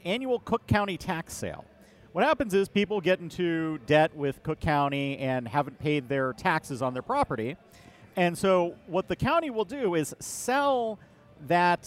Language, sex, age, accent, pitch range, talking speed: English, male, 40-59, American, 140-175 Hz, 165 wpm